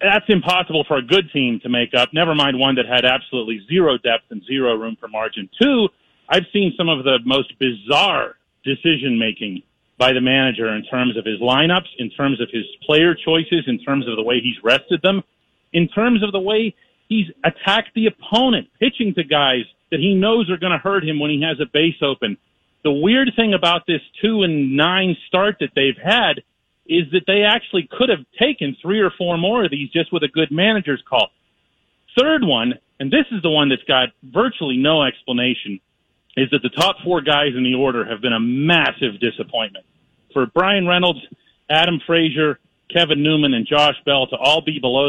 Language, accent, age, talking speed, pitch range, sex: English, American, 40-59, 200 wpm, 130-180 Hz, male